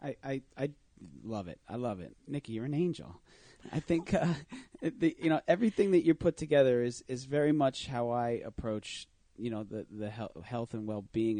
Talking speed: 200 wpm